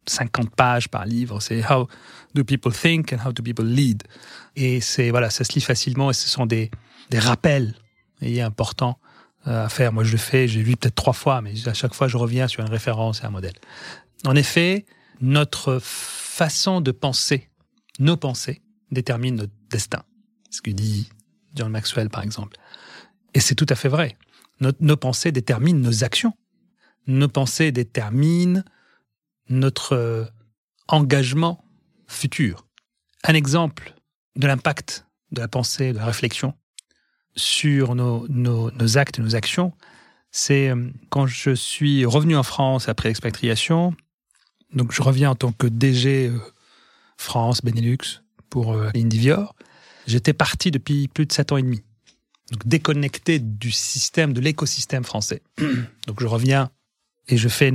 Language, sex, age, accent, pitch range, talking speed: French, male, 30-49, French, 115-145 Hz, 155 wpm